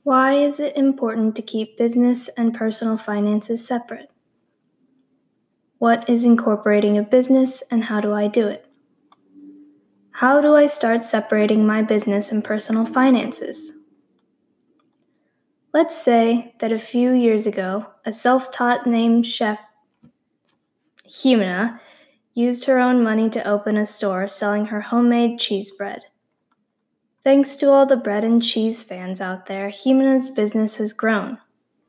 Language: English